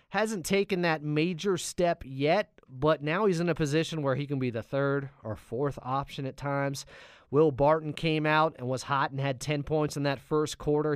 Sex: male